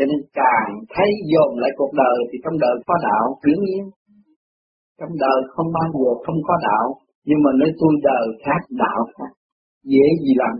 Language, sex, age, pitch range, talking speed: Vietnamese, male, 30-49, 130-170 Hz, 185 wpm